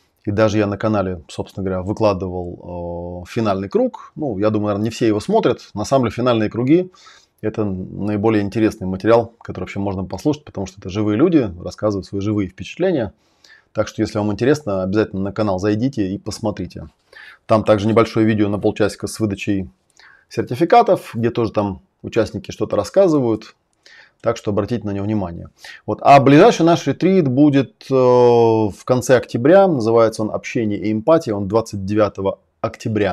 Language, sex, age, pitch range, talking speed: Russian, male, 20-39, 100-115 Hz, 165 wpm